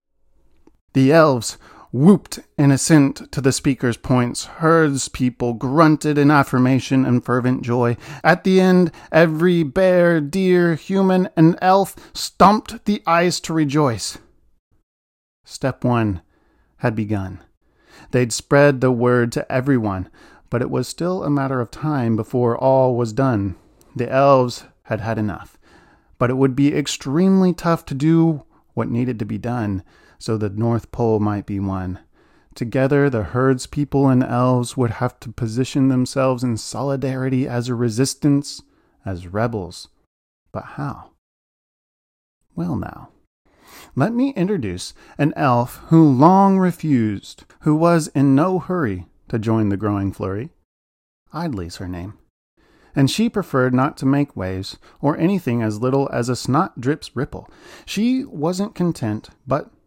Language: English